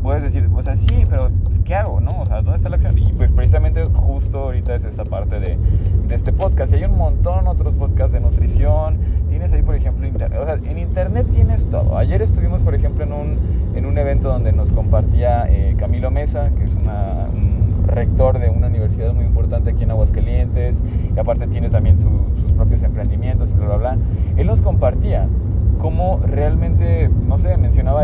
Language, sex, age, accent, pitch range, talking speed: Spanish, male, 20-39, Mexican, 85-95 Hz, 205 wpm